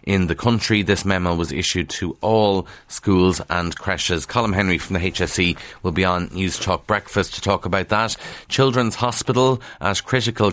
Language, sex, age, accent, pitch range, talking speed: English, male, 30-49, Irish, 95-115 Hz, 175 wpm